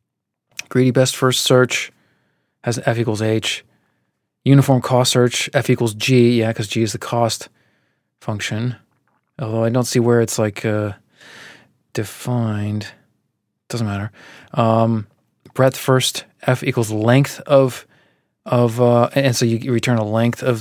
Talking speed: 140 wpm